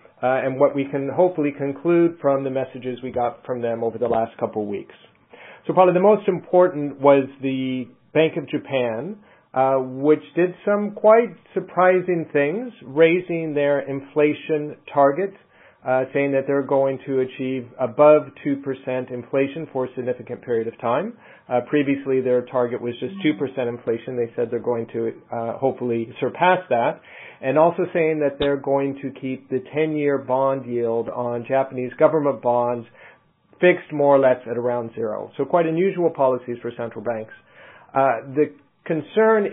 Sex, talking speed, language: male, 160 wpm, English